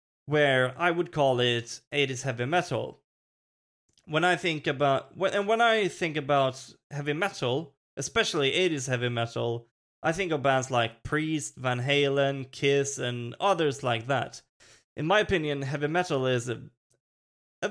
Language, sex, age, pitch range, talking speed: English, male, 20-39, 125-155 Hz, 150 wpm